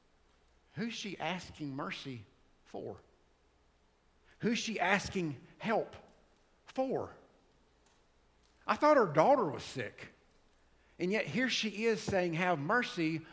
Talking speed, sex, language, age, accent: 110 wpm, male, English, 50-69, American